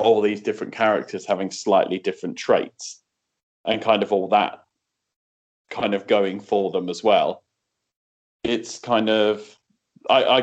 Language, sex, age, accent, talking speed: English, male, 20-39, British, 145 wpm